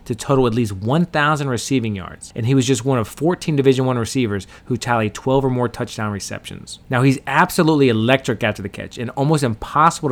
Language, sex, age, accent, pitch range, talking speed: English, male, 30-49, American, 105-140 Hz, 200 wpm